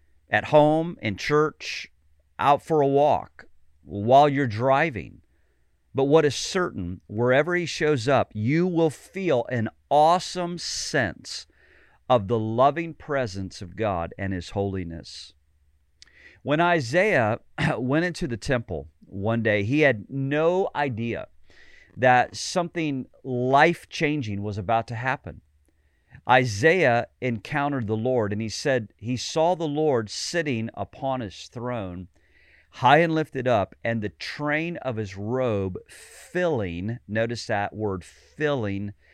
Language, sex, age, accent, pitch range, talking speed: English, male, 40-59, American, 95-145 Hz, 125 wpm